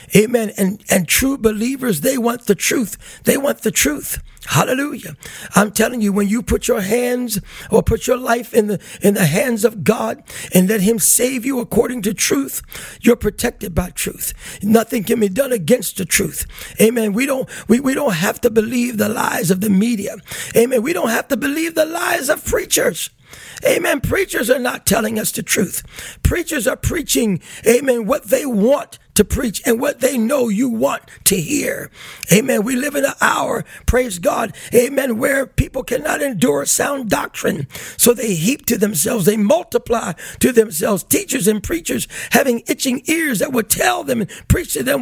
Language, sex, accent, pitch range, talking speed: English, male, American, 215-260 Hz, 185 wpm